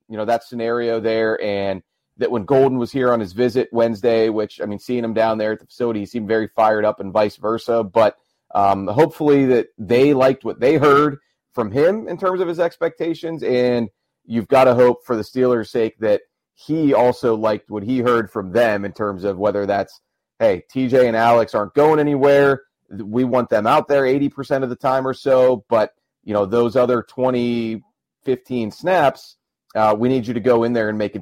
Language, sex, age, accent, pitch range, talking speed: English, male, 30-49, American, 105-130 Hz, 210 wpm